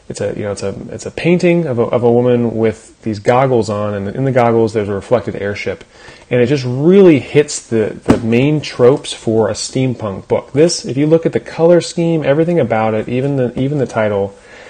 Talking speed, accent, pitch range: 225 wpm, American, 110-140 Hz